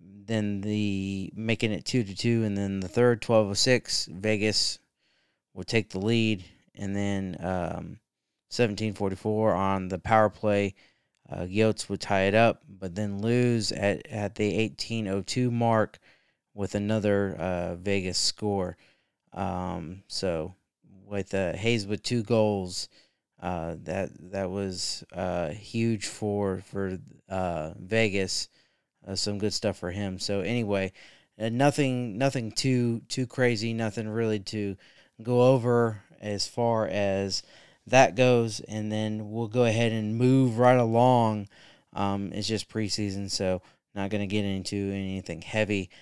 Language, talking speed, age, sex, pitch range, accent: English, 145 wpm, 30-49, male, 95-115 Hz, American